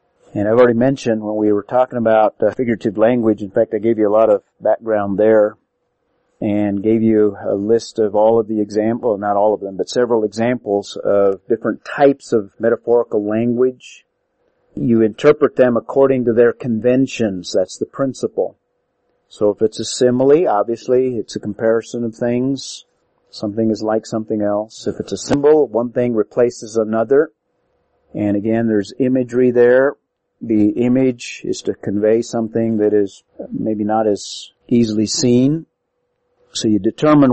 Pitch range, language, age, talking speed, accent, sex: 110-125 Hz, English, 50-69, 160 wpm, American, male